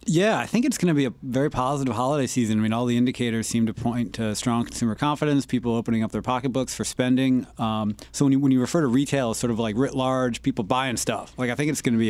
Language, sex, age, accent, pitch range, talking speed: English, male, 30-49, American, 115-135 Hz, 280 wpm